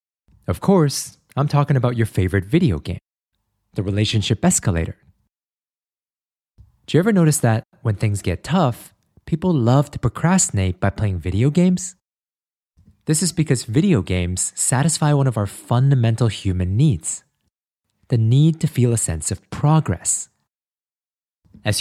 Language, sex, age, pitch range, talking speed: English, male, 20-39, 100-150 Hz, 140 wpm